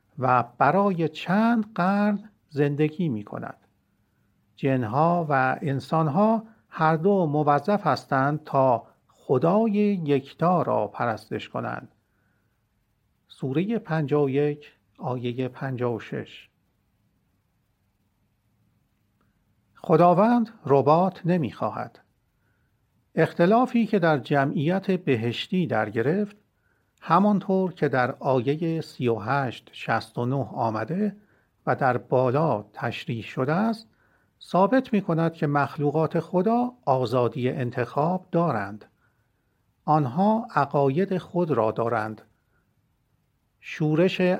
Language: Persian